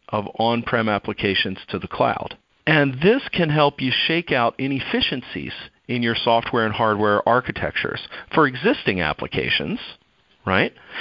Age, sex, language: 40-59, male, English